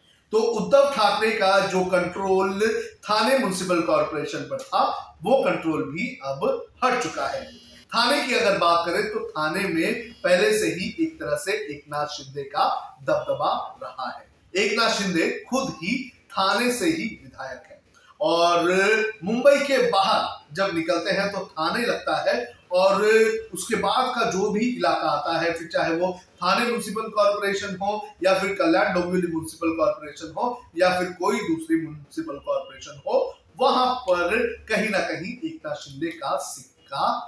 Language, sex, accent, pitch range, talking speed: Hindi, male, native, 165-230 Hz, 155 wpm